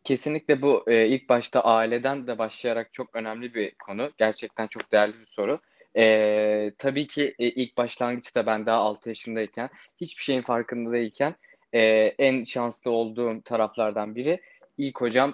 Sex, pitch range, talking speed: male, 110-125 Hz, 150 wpm